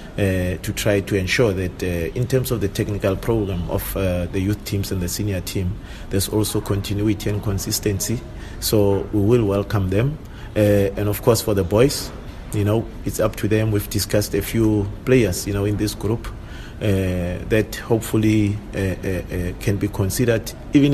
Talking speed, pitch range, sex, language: 185 wpm, 95-110 Hz, male, English